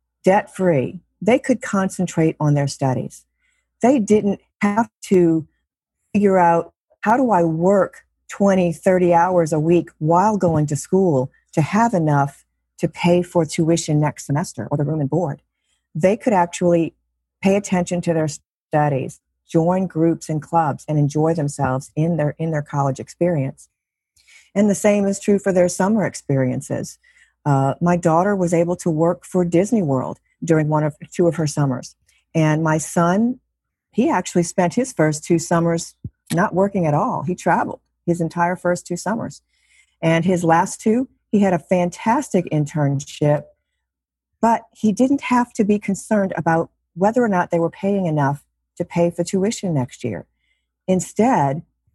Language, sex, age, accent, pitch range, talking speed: English, female, 40-59, American, 155-195 Hz, 160 wpm